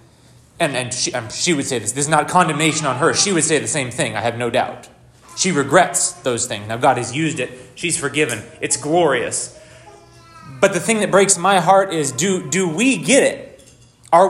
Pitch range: 125-170 Hz